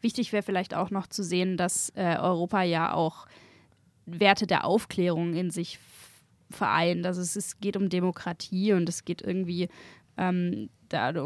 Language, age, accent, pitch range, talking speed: German, 20-39, German, 170-195 Hz, 150 wpm